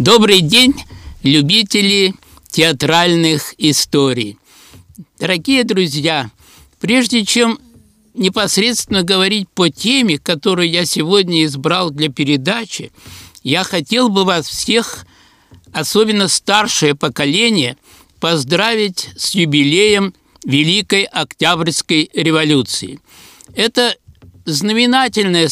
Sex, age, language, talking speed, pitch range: male, 60-79, Russian, 80 wpm, 160-215 Hz